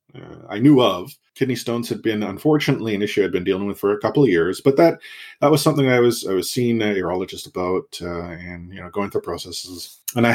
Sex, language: male, English